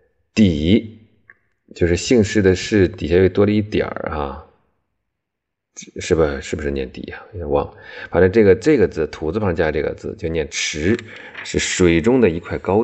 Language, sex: Chinese, male